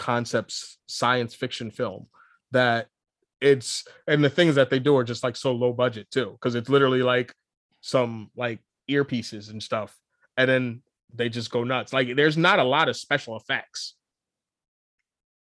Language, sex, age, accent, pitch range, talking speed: English, male, 20-39, American, 120-145 Hz, 165 wpm